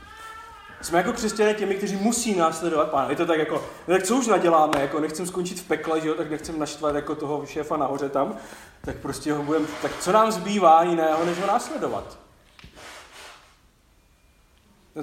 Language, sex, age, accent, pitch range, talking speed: Czech, male, 30-49, native, 165-210 Hz, 175 wpm